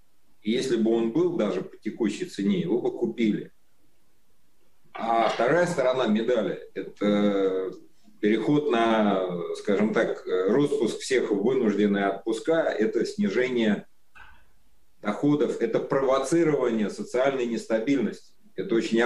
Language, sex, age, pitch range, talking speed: Russian, male, 30-49, 105-160 Hz, 105 wpm